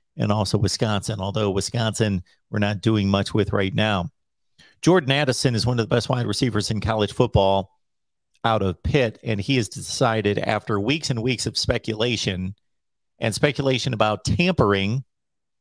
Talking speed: 160 wpm